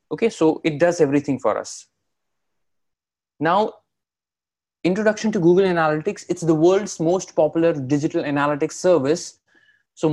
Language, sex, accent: English, male, Indian